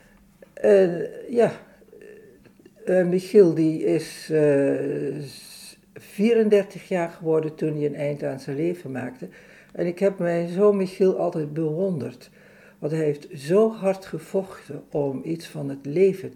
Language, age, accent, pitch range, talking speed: Dutch, 60-79, Dutch, 145-195 Hz, 140 wpm